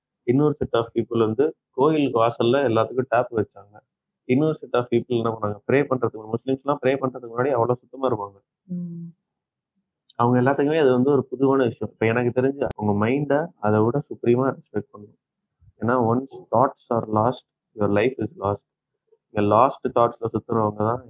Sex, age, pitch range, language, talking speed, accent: male, 20-39, 110-130 Hz, Tamil, 160 wpm, native